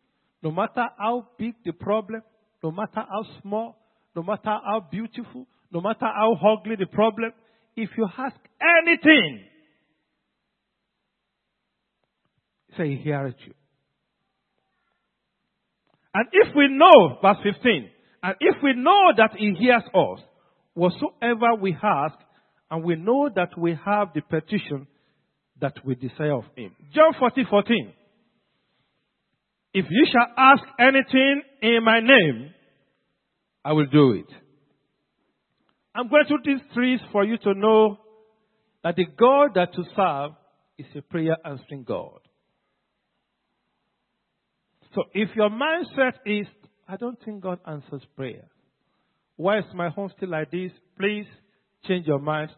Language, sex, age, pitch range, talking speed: English, male, 50-69, 170-235 Hz, 130 wpm